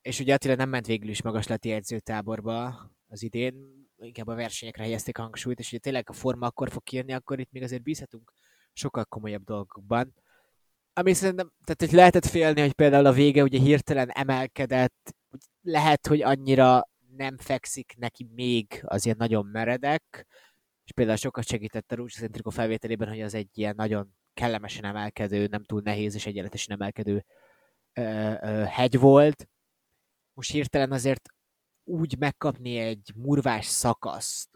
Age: 20-39